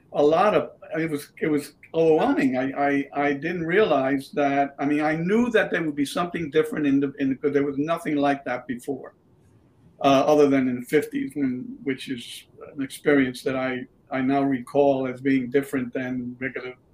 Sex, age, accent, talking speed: male, 50-69, American, 195 wpm